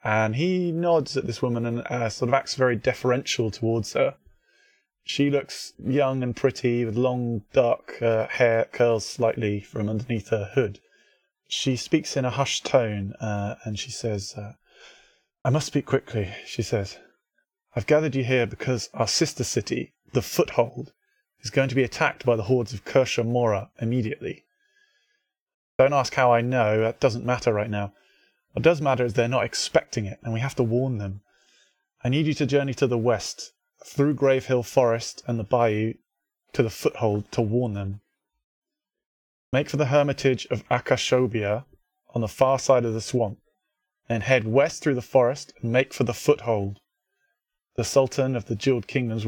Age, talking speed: 20-39, 175 wpm